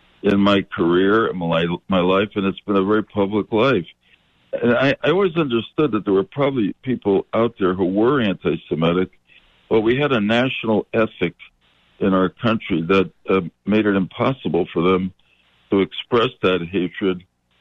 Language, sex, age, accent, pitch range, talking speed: English, male, 60-79, American, 80-100 Hz, 165 wpm